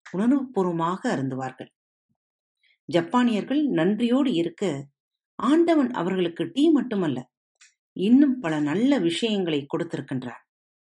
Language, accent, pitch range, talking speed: Tamil, native, 150-240 Hz, 70 wpm